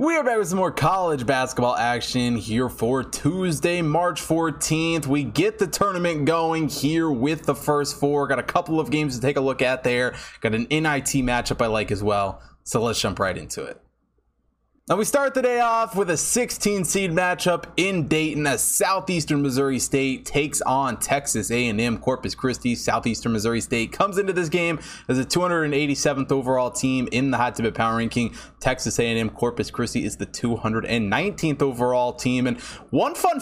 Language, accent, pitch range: English, American, 125-165 Hz